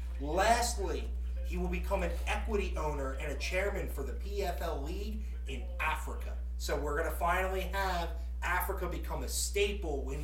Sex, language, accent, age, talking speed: male, English, American, 30-49, 160 wpm